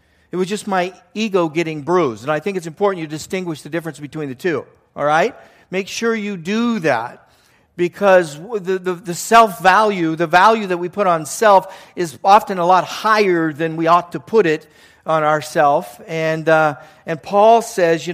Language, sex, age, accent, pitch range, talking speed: English, male, 50-69, American, 155-190 Hz, 190 wpm